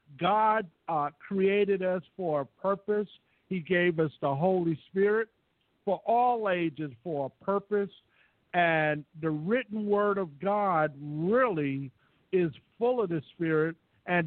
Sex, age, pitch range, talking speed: male, 50-69, 155-205 Hz, 135 wpm